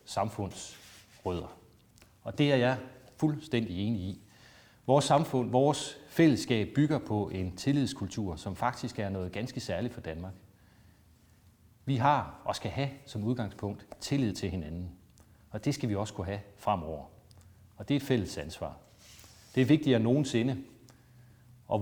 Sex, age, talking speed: male, 30-49, 150 wpm